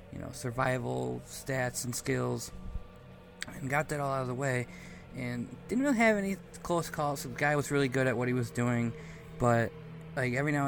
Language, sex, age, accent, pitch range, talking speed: English, male, 20-39, American, 120-140 Hz, 195 wpm